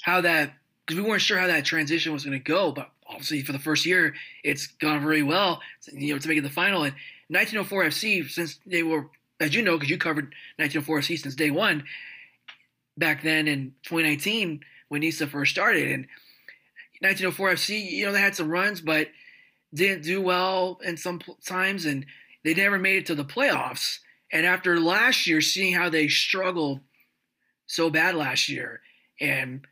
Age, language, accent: 20-39, English, American